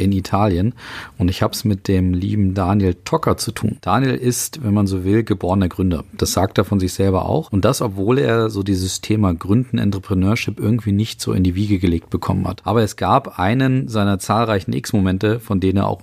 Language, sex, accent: German, male, German